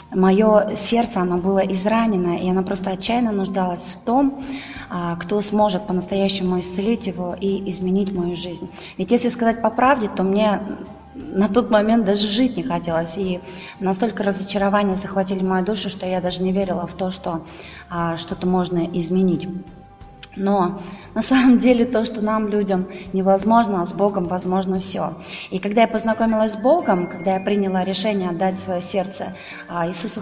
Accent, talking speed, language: native, 160 wpm, Russian